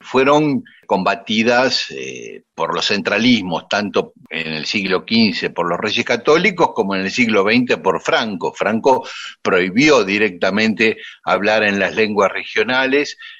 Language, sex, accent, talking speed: Spanish, male, Argentinian, 135 wpm